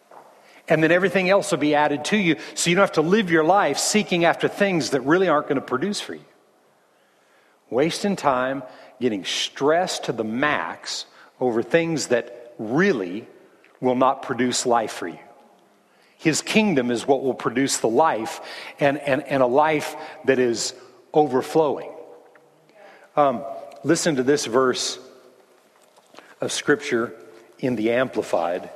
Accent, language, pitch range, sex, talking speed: American, English, 115-160 Hz, male, 150 wpm